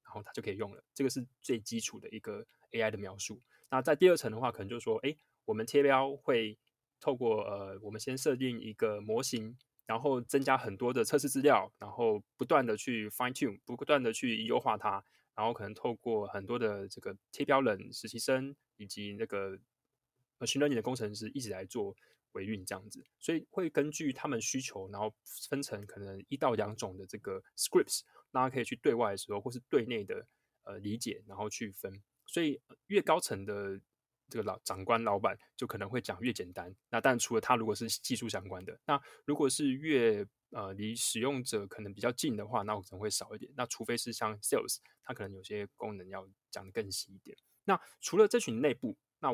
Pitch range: 105-135 Hz